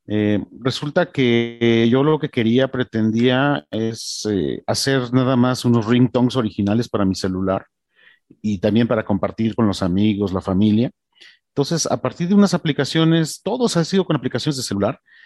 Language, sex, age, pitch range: Spanish, male, 40-59, 115-155 Hz